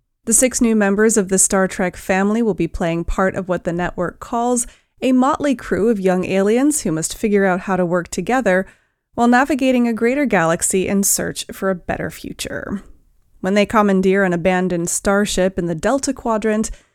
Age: 30-49